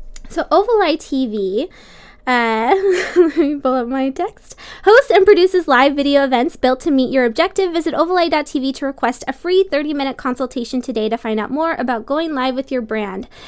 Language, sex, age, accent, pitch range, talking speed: English, female, 20-39, American, 235-295 Hz, 175 wpm